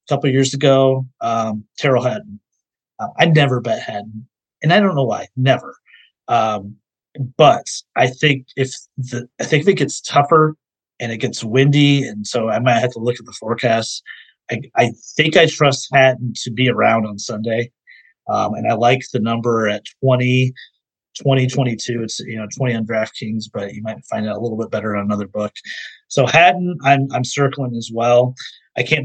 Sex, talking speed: male, 190 wpm